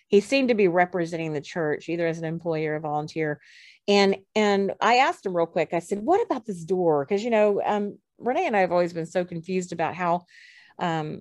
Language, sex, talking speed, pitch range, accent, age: English, female, 225 wpm, 155-195 Hz, American, 40-59